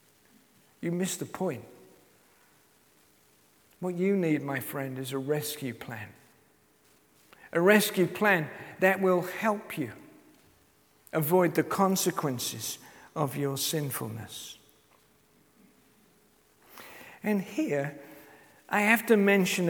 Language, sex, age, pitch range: English, male, 50-69, 150-205 Hz